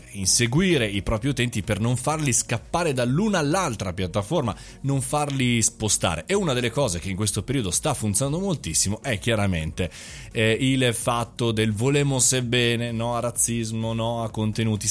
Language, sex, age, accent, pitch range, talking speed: Italian, male, 20-39, native, 95-130 Hz, 155 wpm